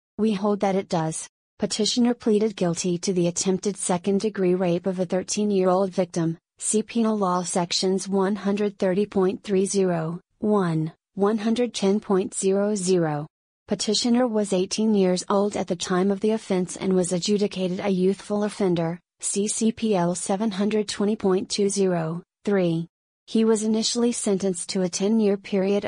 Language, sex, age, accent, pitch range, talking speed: English, female, 30-49, American, 185-210 Hz, 120 wpm